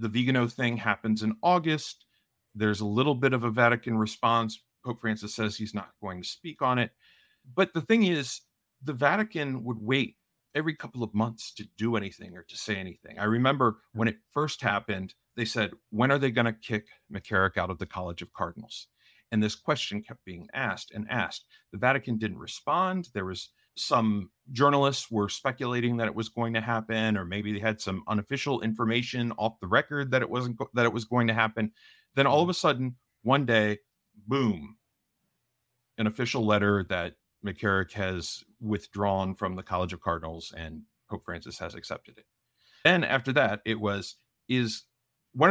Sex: male